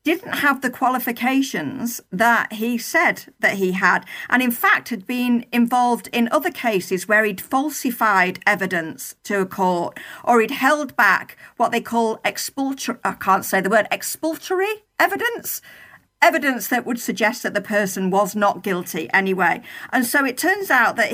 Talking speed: 165 wpm